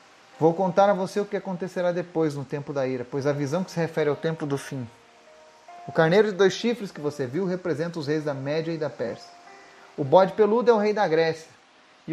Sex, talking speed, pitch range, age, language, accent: male, 235 wpm, 145-190 Hz, 30-49, Portuguese, Brazilian